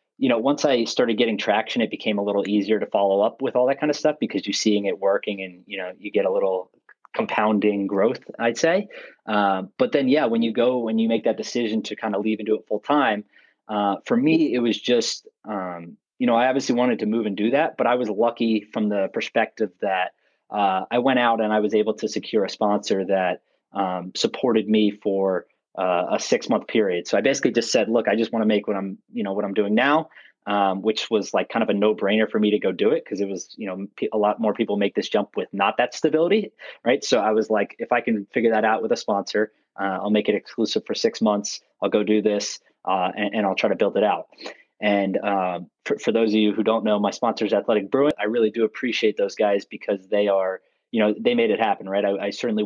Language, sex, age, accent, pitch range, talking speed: English, male, 30-49, American, 100-115 Hz, 255 wpm